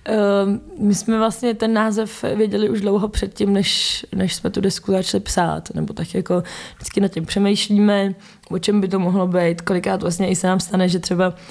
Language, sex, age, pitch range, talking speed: Czech, female, 20-39, 170-190 Hz, 195 wpm